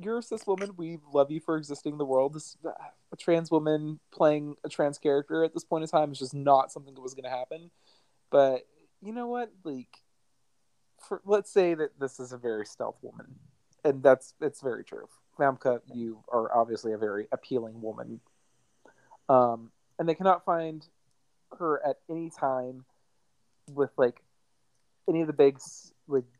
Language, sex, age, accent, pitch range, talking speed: English, male, 30-49, American, 125-155 Hz, 180 wpm